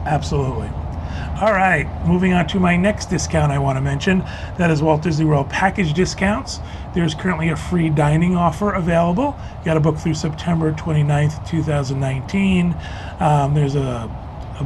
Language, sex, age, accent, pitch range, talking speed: English, male, 30-49, American, 135-165 Hz, 160 wpm